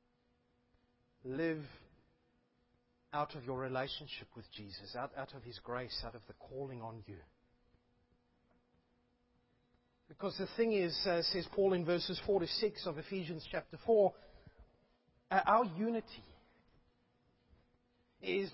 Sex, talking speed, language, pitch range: male, 115 wpm, English, 170-270 Hz